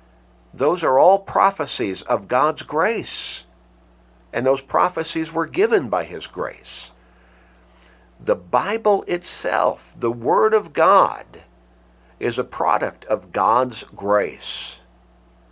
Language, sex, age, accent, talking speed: English, male, 60-79, American, 110 wpm